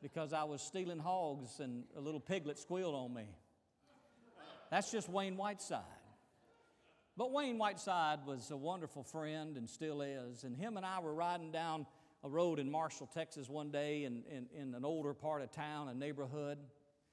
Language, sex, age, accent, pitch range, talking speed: English, male, 50-69, American, 145-195 Hz, 170 wpm